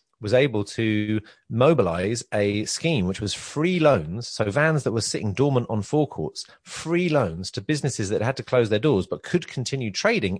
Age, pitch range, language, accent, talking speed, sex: 30-49, 105-130 Hz, English, British, 185 wpm, male